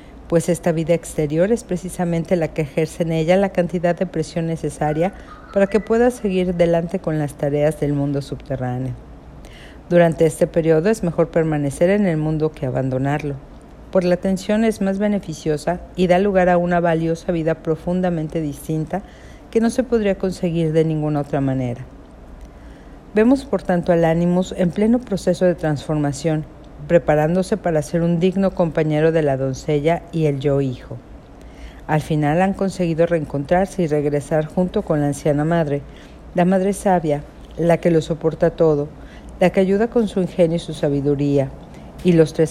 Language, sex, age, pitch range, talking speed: Spanish, female, 50-69, 150-185 Hz, 165 wpm